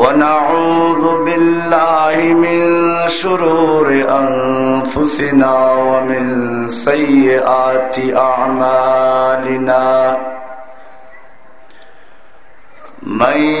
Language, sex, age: Bengali, male, 50-69